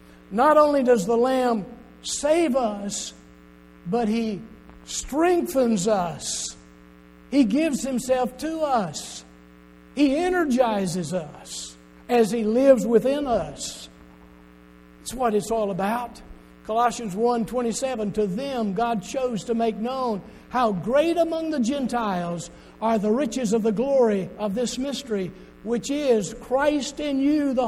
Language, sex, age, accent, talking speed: English, male, 60-79, American, 130 wpm